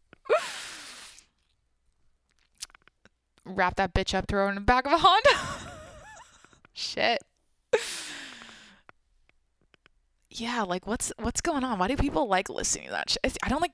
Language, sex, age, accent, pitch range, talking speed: English, female, 20-39, American, 165-225 Hz, 125 wpm